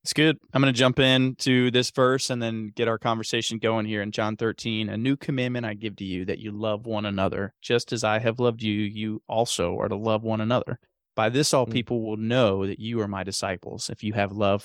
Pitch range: 110-125 Hz